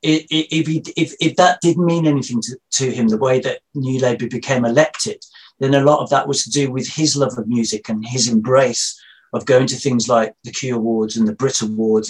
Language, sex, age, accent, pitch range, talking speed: English, male, 40-59, British, 125-155 Hz, 230 wpm